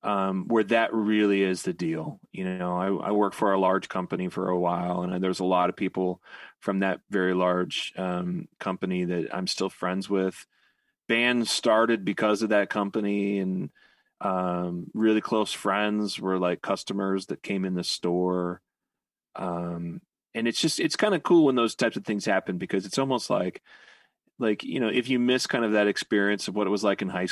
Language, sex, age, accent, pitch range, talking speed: English, male, 30-49, American, 95-115 Hz, 200 wpm